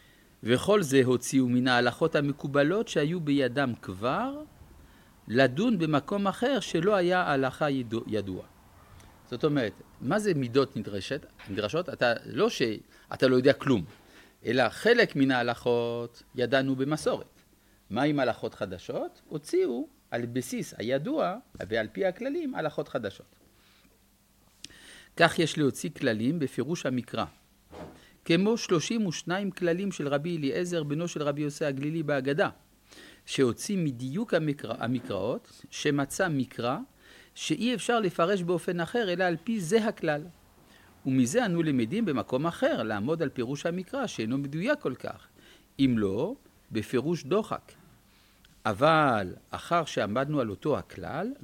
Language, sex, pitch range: Hebrew, male, 125-180 Hz